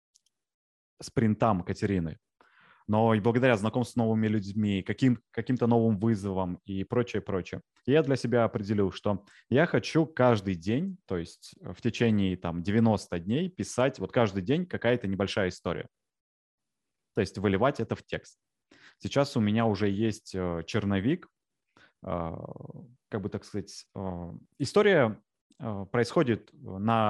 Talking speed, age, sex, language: 130 wpm, 20-39, male, Russian